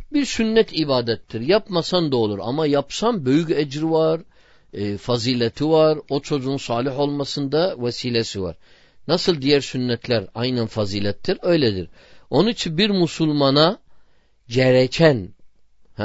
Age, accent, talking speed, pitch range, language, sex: 50-69, native, 115 wpm, 125-170 Hz, Turkish, male